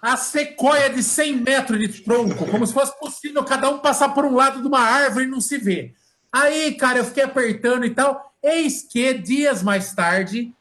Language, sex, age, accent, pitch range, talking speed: Portuguese, male, 50-69, Brazilian, 210-275 Hz, 205 wpm